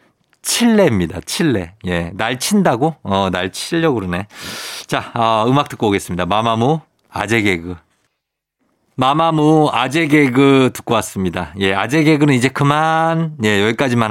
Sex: male